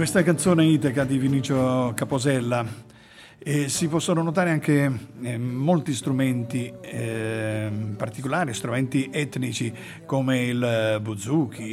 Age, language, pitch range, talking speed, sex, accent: 50-69, Italian, 120-165 Hz, 100 wpm, male, native